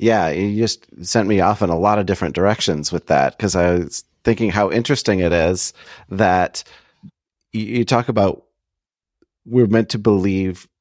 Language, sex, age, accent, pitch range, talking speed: English, male, 30-49, American, 95-120 Hz, 165 wpm